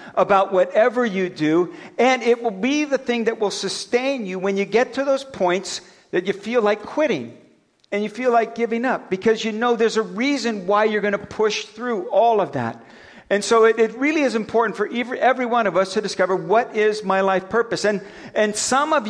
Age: 50-69